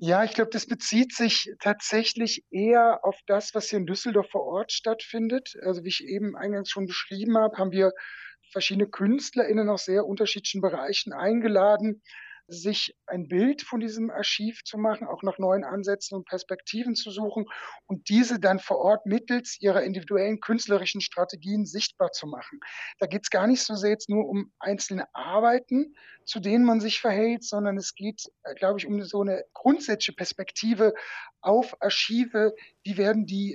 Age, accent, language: 60-79, German, German